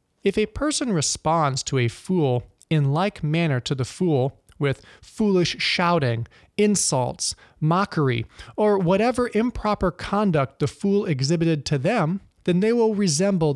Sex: male